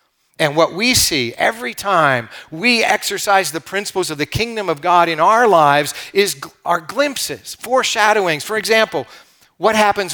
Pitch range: 140-195 Hz